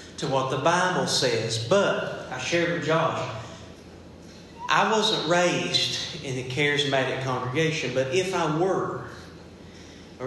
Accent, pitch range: American, 135-180 Hz